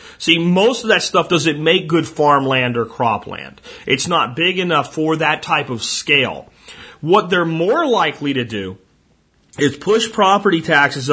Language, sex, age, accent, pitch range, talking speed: English, male, 40-59, American, 130-165 Hz, 160 wpm